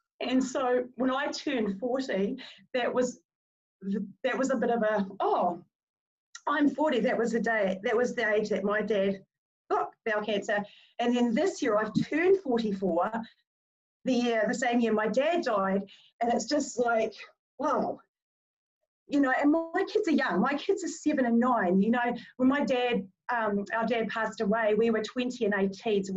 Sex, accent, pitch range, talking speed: female, Australian, 215-260 Hz, 185 wpm